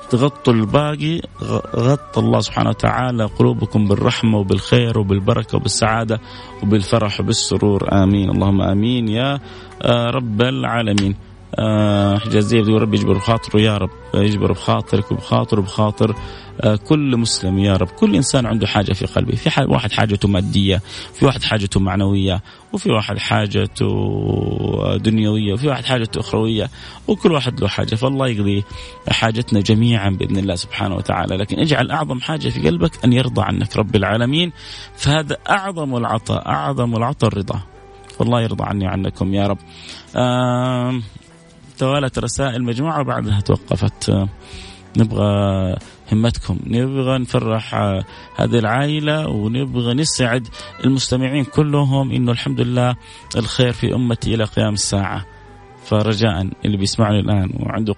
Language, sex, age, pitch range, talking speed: Arabic, male, 30-49, 100-125 Hz, 125 wpm